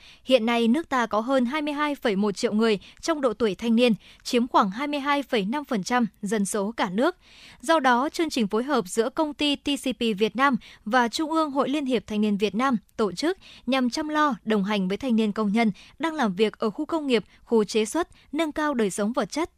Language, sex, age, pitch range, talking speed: Vietnamese, male, 20-39, 220-280 Hz, 220 wpm